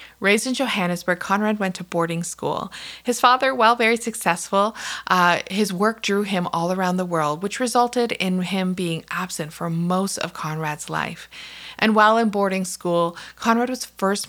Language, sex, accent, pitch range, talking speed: English, female, American, 170-220 Hz, 170 wpm